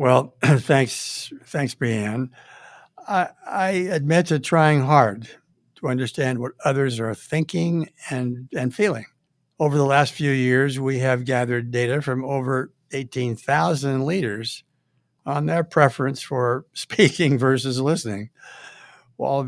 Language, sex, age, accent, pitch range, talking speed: English, male, 60-79, American, 125-155 Hz, 125 wpm